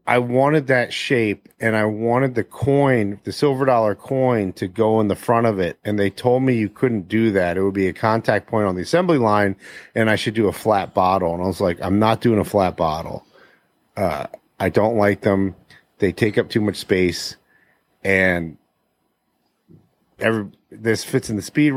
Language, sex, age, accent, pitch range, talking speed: English, male, 40-59, American, 95-115 Hz, 200 wpm